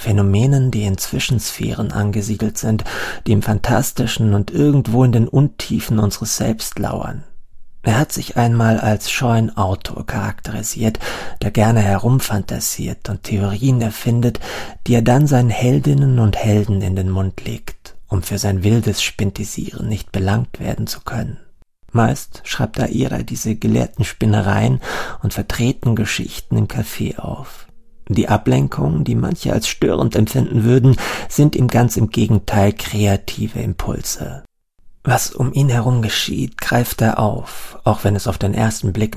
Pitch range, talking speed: 100-120 Hz, 145 wpm